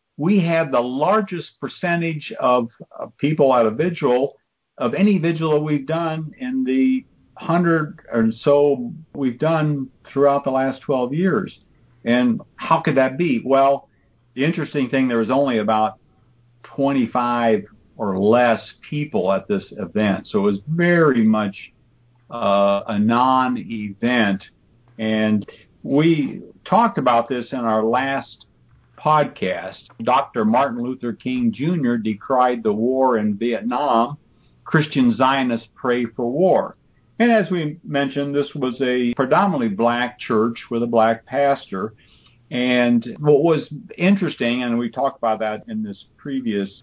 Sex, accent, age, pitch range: male, American, 50-69, 115-150 Hz